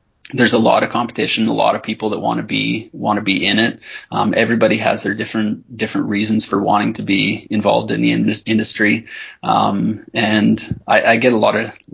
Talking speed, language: 215 wpm, English